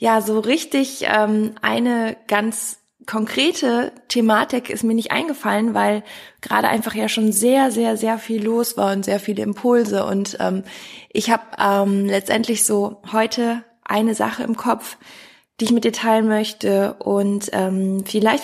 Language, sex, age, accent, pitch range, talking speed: German, female, 20-39, German, 195-225 Hz, 155 wpm